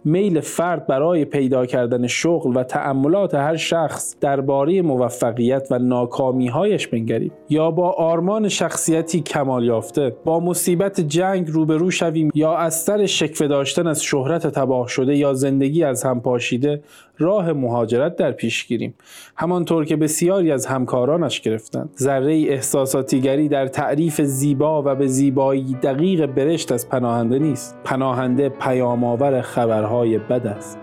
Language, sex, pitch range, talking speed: Persian, male, 125-160 Hz, 135 wpm